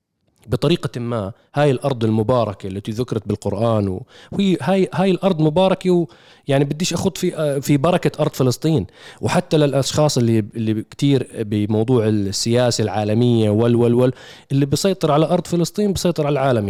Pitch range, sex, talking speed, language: 125-175 Hz, male, 145 wpm, Arabic